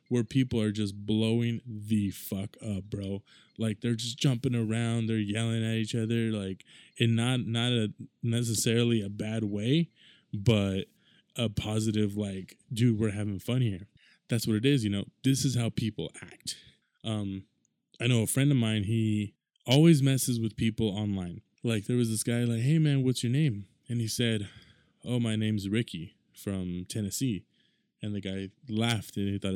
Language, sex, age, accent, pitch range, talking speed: English, male, 20-39, American, 105-120 Hz, 180 wpm